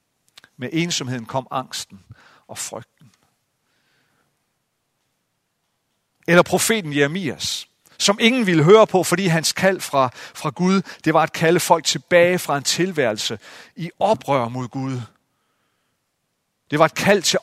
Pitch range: 130-175 Hz